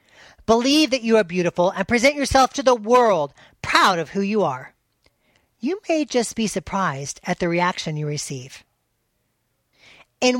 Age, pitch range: 40-59, 160-220 Hz